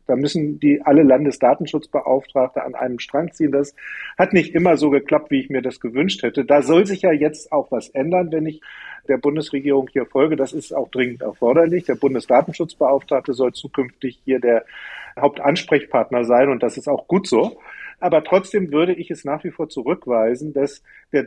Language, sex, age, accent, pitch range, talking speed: German, male, 40-59, German, 135-160 Hz, 185 wpm